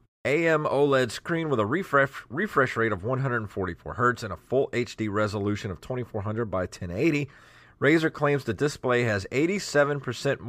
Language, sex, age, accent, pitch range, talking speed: English, male, 30-49, American, 95-130 Hz, 150 wpm